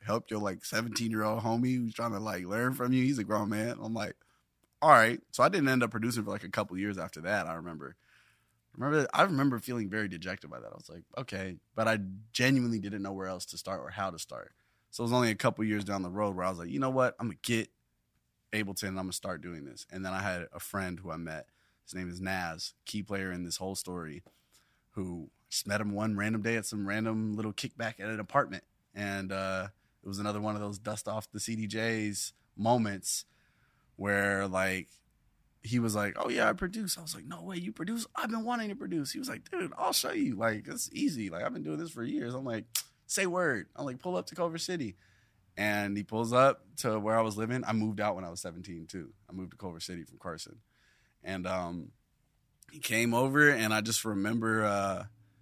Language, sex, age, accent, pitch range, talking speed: English, male, 20-39, American, 95-120 Hz, 240 wpm